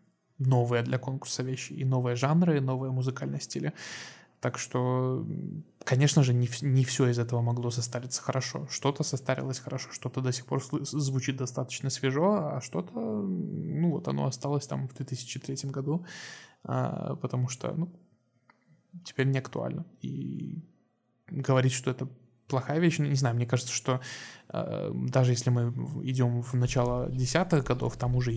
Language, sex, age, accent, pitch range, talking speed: Russian, male, 20-39, native, 120-145 Hz, 150 wpm